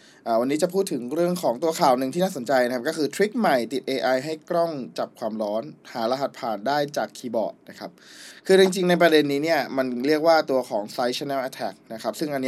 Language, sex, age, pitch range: Thai, male, 20-39, 130-165 Hz